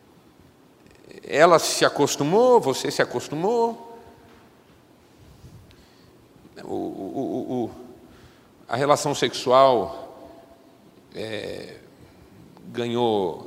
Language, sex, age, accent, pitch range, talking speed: Portuguese, male, 50-69, Brazilian, 130-190 Hz, 45 wpm